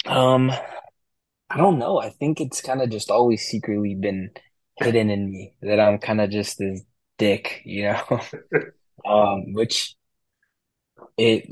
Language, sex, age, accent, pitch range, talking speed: English, male, 20-39, American, 95-105 Hz, 145 wpm